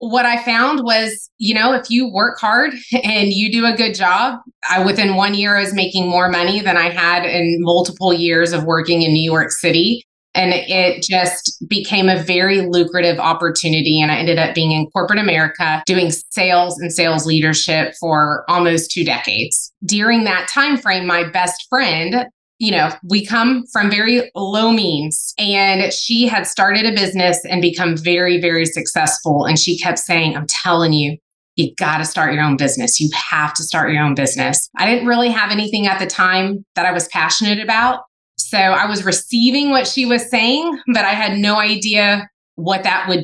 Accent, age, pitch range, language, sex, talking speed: American, 20-39, 170-210 Hz, English, female, 190 wpm